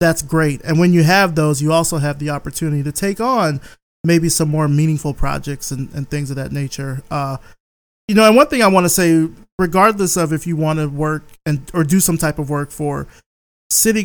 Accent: American